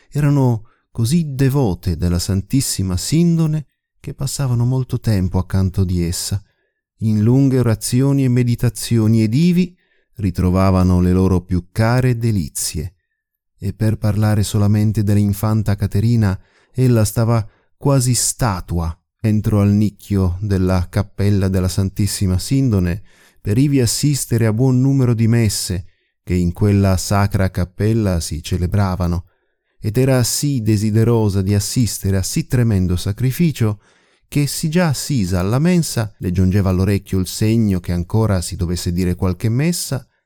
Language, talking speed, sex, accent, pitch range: Italian, 130 wpm, male, native, 95-125 Hz